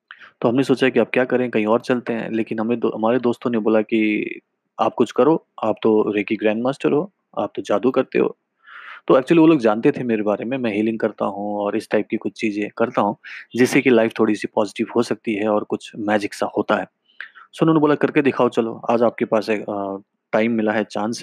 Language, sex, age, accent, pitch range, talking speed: Hindi, male, 30-49, native, 105-125 Hz, 230 wpm